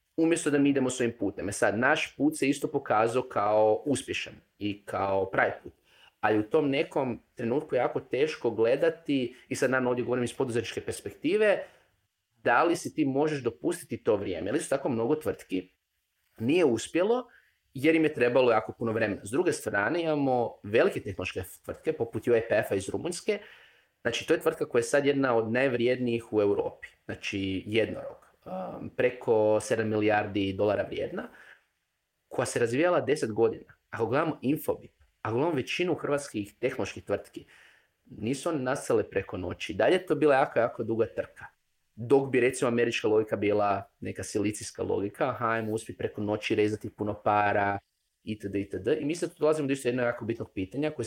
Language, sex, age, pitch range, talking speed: Croatian, male, 30-49, 105-145 Hz, 170 wpm